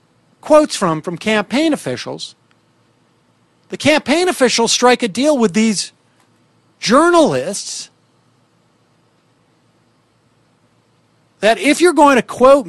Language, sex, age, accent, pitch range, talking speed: English, male, 50-69, American, 175-255 Hz, 95 wpm